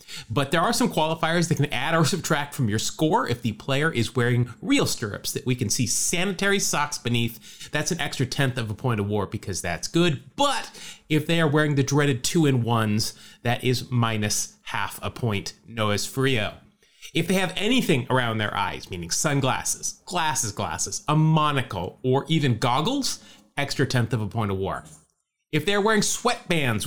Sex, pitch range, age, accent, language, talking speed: male, 115-170 Hz, 30-49, American, English, 185 wpm